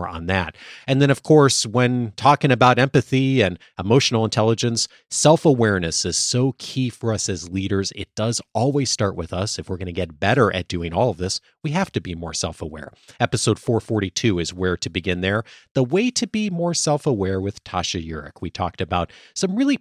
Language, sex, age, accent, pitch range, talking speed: English, male, 30-49, American, 100-150 Hz, 195 wpm